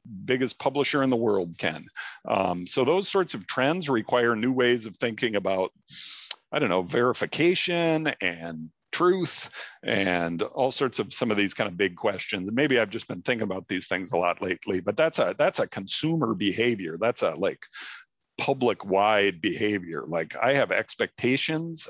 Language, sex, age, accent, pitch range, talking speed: English, male, 50-69, American, 100-130 Hz, 175 wpm